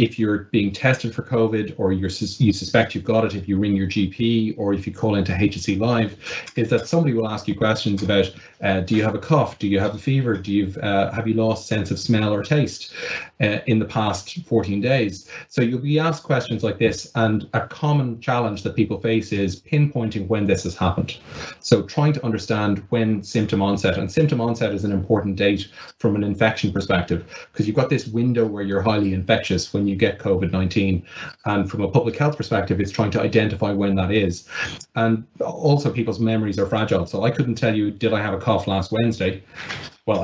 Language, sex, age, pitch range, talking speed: English, male, 30-49, 100-120 Hz, 215 wpm